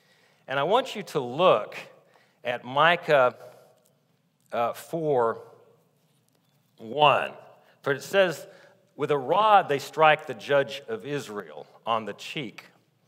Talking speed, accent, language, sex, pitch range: 120 wpm, American, English, male, 140-200 Hz